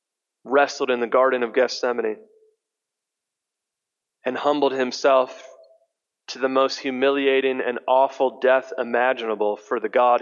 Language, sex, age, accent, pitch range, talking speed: English, male, 30-49, American, 115-145 Hz, 115 wpm